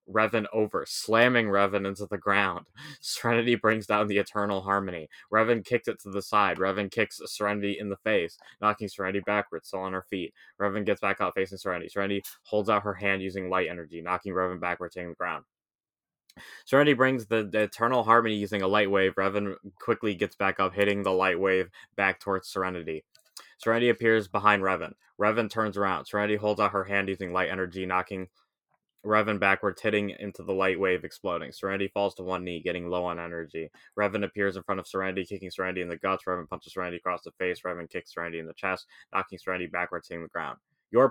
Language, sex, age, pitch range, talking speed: English, male, 20-39, 95-110 Hz, 200 wpm